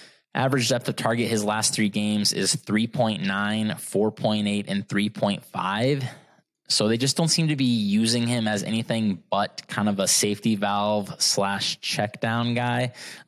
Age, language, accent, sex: 20-39, English, American, male